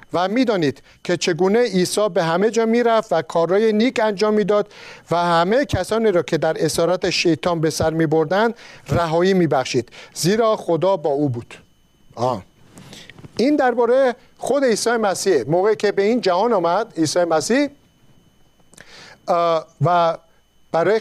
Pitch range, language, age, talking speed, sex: 160-215 Hz, Persian, 50-69, 150 wpm, male